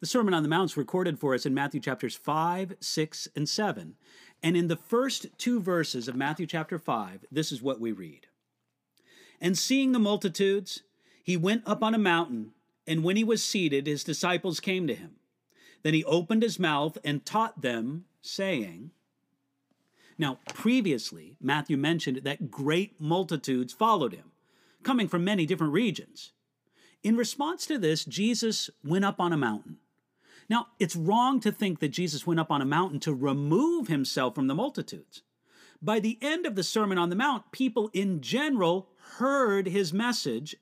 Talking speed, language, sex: 175 wpm, English, male